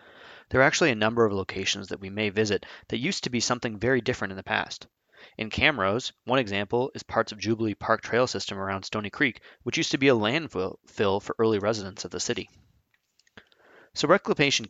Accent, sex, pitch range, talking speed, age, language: American, male, 100-120 Hz, 200 wpm, 20-39, English